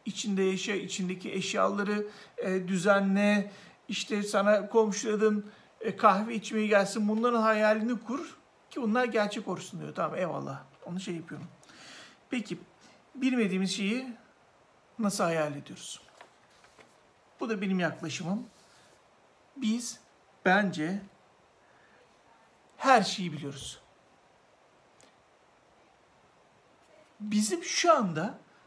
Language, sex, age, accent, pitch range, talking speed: Turkish, male, 60-79, native, 175-215 Hz, 90 wpm